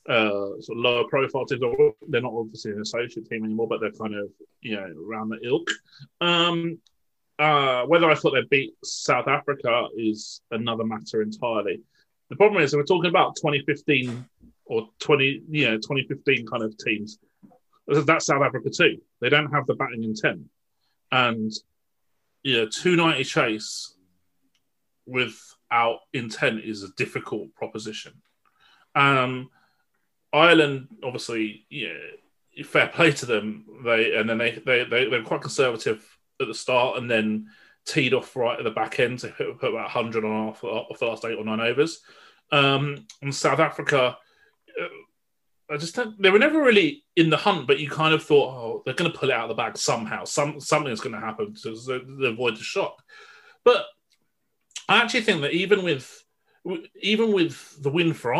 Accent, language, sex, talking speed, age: British, English, male, 165 wpm, 30-49